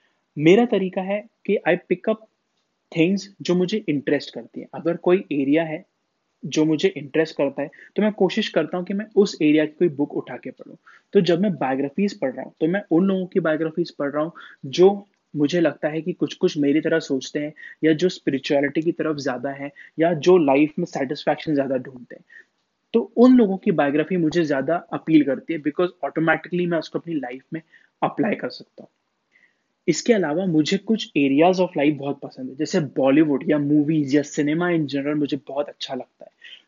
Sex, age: male, 20-39